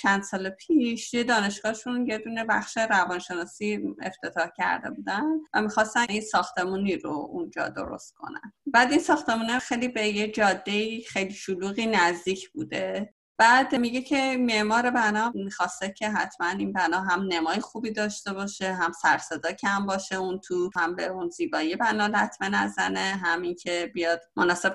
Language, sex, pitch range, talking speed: Persian, female, 180-240 Hz, 155 wpm